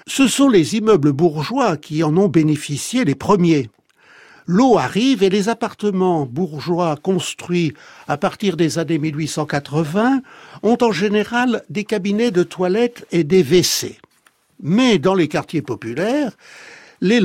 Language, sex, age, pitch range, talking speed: French, male, 60-79, 155-235 Hz, 135 wpm